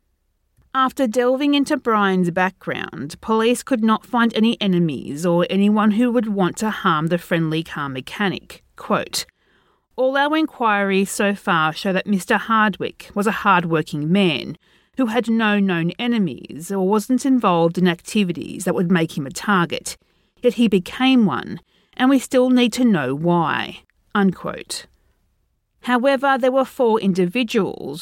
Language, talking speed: English, 150 wpm